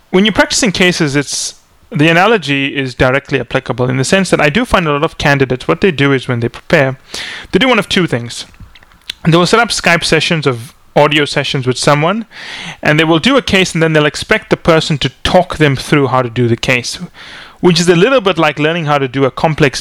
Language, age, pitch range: English, 30-49, 130-160 Hz